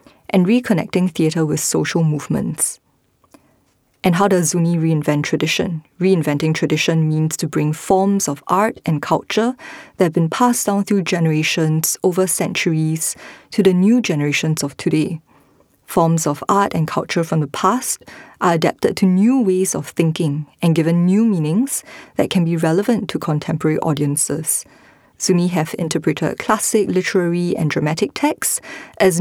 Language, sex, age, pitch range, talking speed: English, female, 20-39, 160-205 Hz, 150 wpm